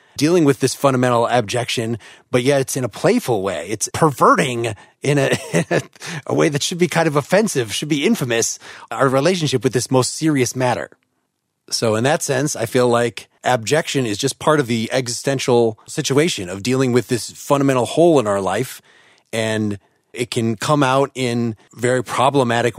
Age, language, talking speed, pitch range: 30-49, English, 175 wpm, 115-140 Hz